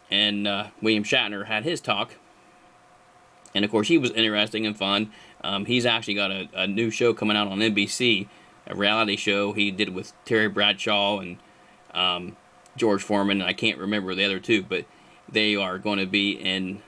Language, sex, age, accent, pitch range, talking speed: English, male, 30-49, American, 95-110 Hz, 190 wpm